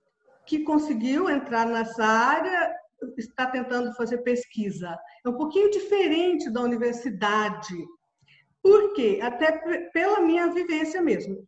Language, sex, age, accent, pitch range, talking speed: Portuguese, female, 50-69, Brazilian, 250-365 Hz, 115 wpm